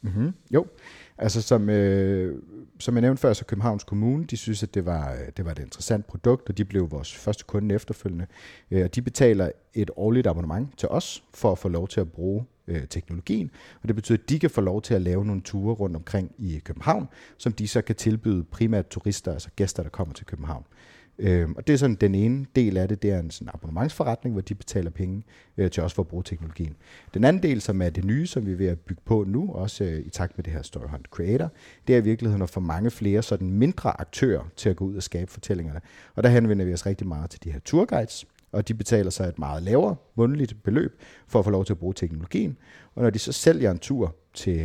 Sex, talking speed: male, 230 wpm